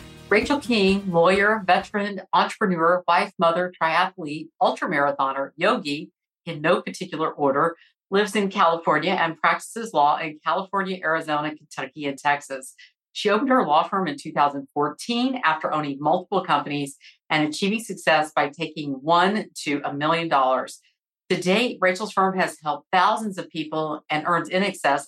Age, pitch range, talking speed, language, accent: 50-69, 150-185 Hz, 145 wpm, English, American